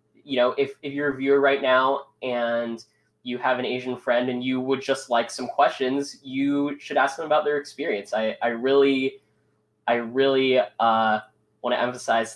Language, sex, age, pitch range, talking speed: English, male, 10-29, 110-135 Hz, 185 wpm